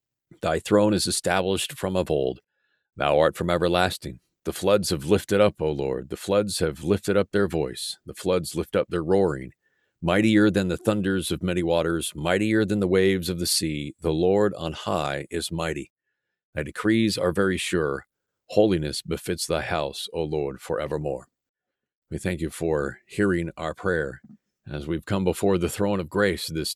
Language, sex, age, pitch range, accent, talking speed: English, male, 50-69, 80-95 Hz, American, 175 wpm